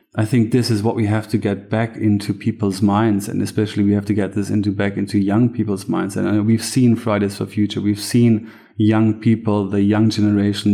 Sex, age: male, 30-49